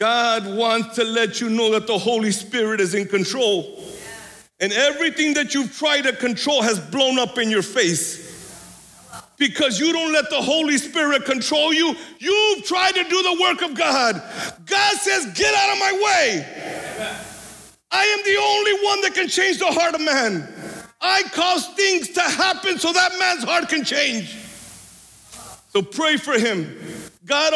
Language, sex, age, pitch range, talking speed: English, male, 50-69, 205-310 Hz, 170 wpm